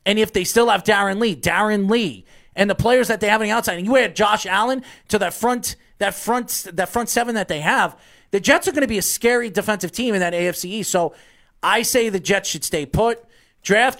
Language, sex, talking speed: English, male, 240 wpm